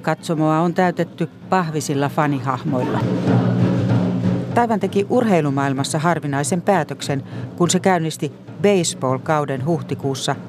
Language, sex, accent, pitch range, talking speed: Finnish, female, native, 140-175 Hz, 85 wpm